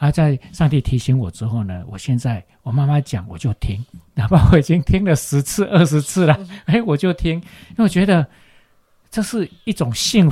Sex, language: male, Chinese